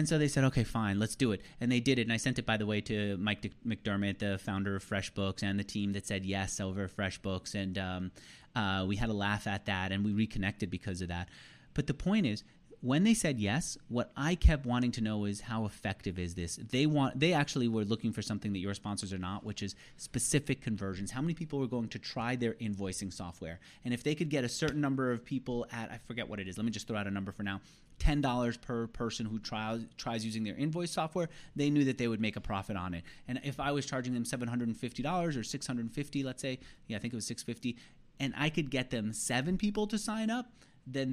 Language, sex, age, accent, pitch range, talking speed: English, male, 30-49, American, 105-135 Hz, 250 wpm